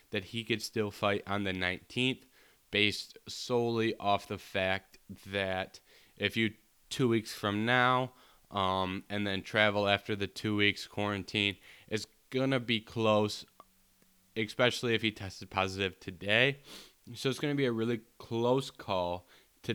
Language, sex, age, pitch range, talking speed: English, male, 10-29, 100-115 Hz, 150 wpm